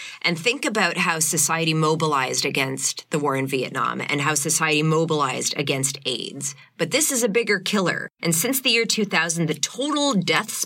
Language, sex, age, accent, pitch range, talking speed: English, female, 30-49, American, 150-195 Hz, 175 wpm